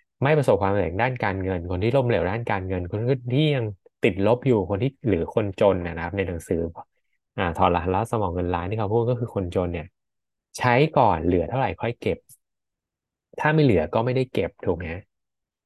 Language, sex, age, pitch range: Thai, male, 20-39, 95-125 Hz